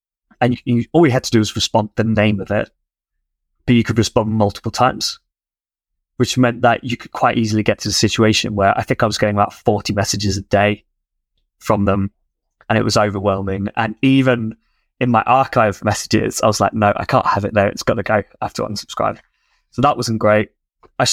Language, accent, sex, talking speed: English, British, male, 215 wpm